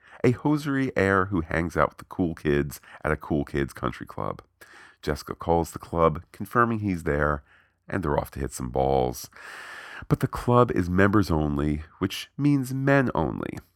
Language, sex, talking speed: English, male, 175 wpm